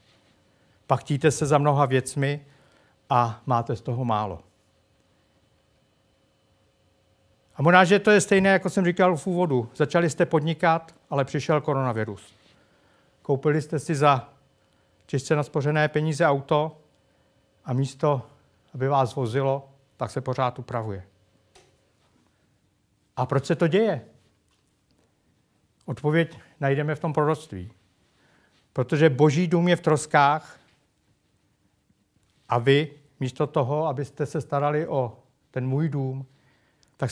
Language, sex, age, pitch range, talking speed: Czech, male, 60-79, 120-150 Hz, 115 wpm